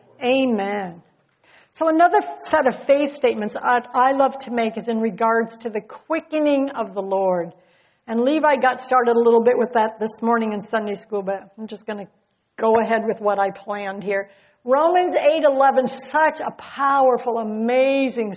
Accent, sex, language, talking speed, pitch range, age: American, female, English, 175 wpm, 215-300 Hz, 60-79